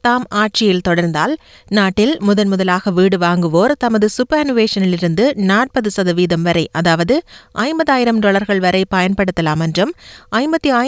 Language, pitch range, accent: Tamil, 175-230 Hz, native